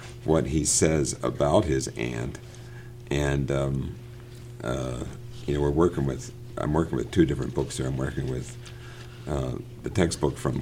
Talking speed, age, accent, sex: 160 wpm, 50-69, American, male